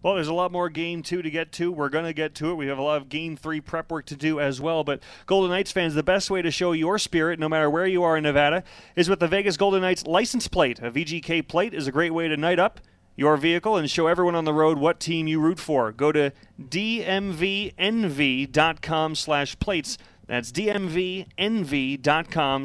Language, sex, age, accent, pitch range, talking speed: English, male, 30-49, American, 150-185 Hz, 225 wpm